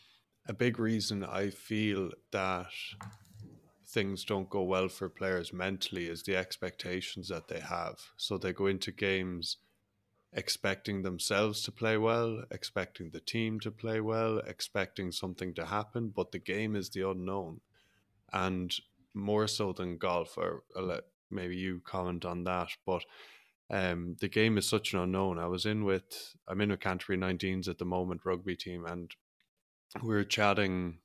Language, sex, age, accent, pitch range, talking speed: English, male, 20-39, Irish, 90-105 Hz, 160 wpm